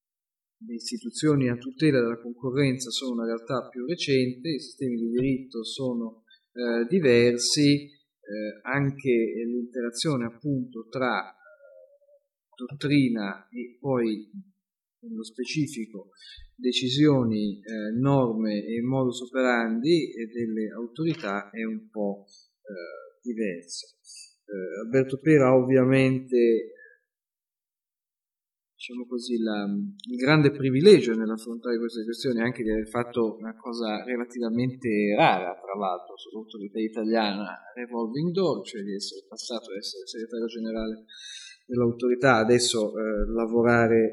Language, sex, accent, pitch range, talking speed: Italian, male, native, 110-135 Hz, 110 wpm